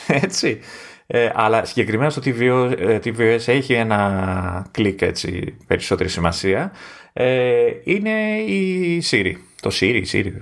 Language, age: Greek, 30-49